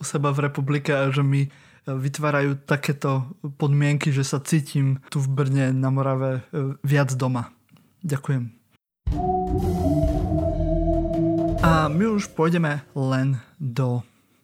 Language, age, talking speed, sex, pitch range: Slovak, 20-39, 110 wpm, male, 135-165 Hz